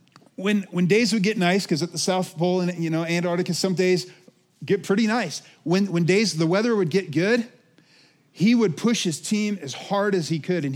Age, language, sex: 40-59, English, male